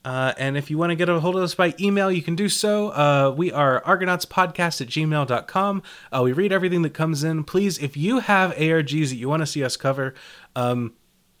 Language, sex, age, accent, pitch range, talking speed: English, male, 30-49, American, 125-165 Hz, 225 wpm